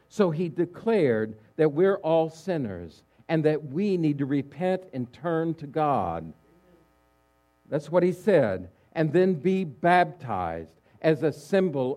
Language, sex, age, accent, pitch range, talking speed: English, male, 60-79, American, 115-170 Hz, 140 wpm